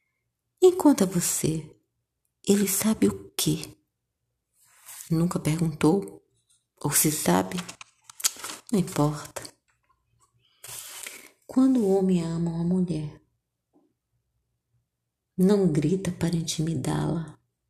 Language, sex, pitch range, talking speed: Portuguese, female, 140-175 Hz, 80 wpm